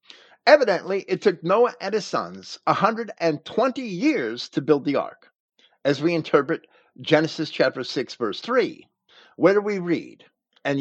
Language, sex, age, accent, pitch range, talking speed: English, male, 50-69, American, 150-220 Hz, 145 wpm